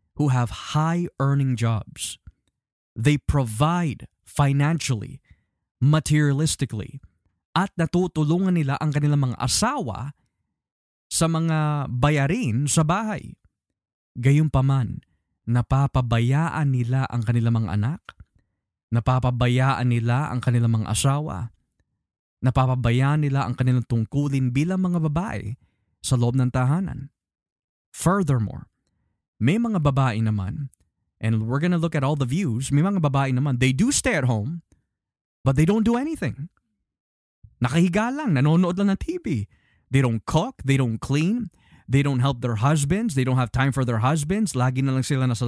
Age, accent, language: 20-39, native, Filipino